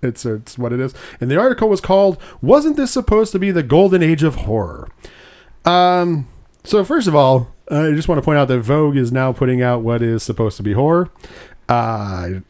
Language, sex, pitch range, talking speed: English, male, 115-145 Hz, 215 wpm